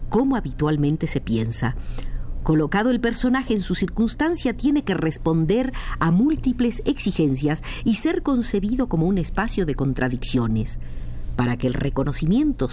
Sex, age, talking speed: female, 50-69, 130 wpm